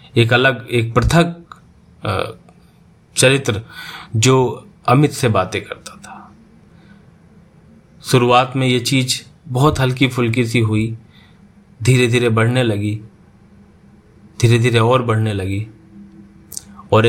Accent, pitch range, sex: native, 110-130 Hz, male